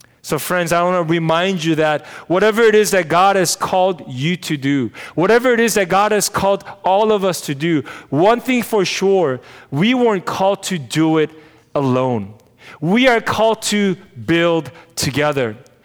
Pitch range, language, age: 155-205 Hz, English, 30-49